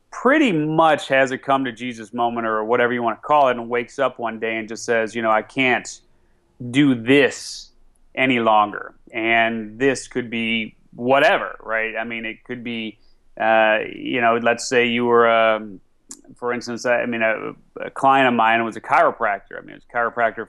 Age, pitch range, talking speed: 30-49, 110-125 Hz, 200 wpm